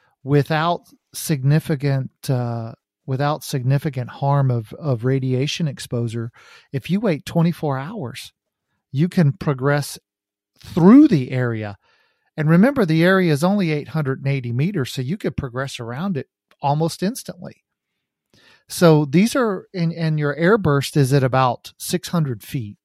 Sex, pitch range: male, 125-160 Hz